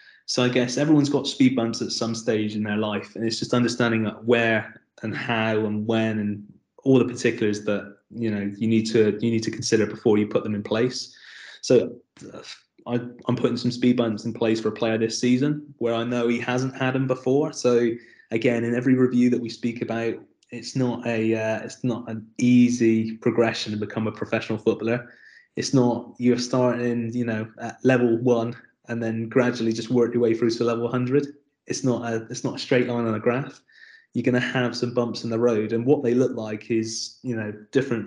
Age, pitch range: 20-39, 110-125 Hz